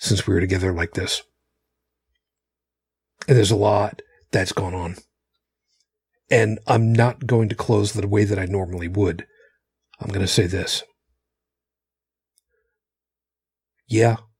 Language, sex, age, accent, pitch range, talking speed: English, male, 40-59, American, 90-135 Hz, 130 wpm